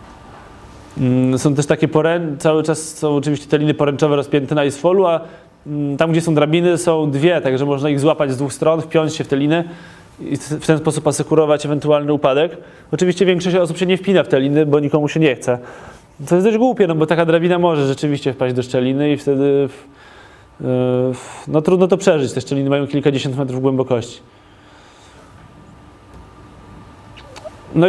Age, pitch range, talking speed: 20-39, 135-160 Hz, 170 wpm